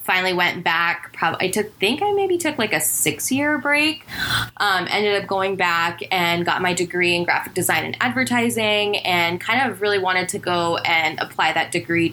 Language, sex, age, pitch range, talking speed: English, female, 10-29, 165-205 Hz, 195 wpm